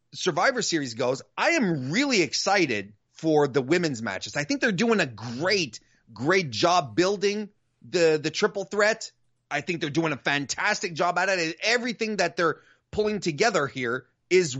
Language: English